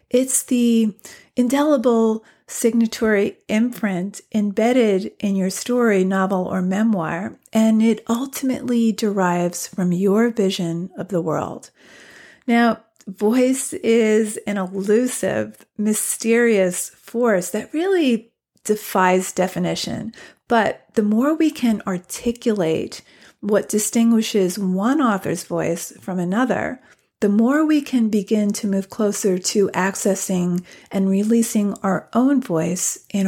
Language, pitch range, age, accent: English, 190-235 Hz, 40-59, American